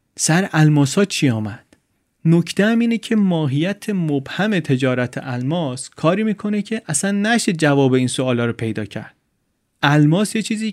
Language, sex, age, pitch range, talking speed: Persian, male, 30-49, 125-165 Hz, 140 wpm